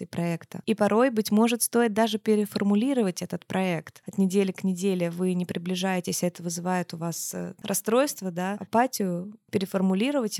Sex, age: female, 20-39